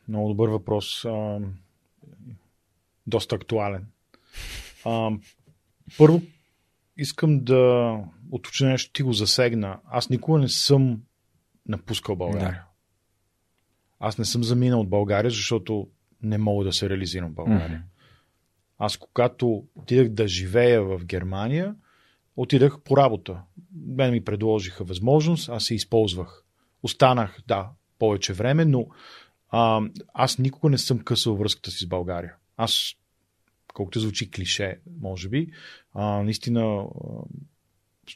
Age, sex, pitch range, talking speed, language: 40-59, male, 95-120 Hz, 115 wpm, Bulgarian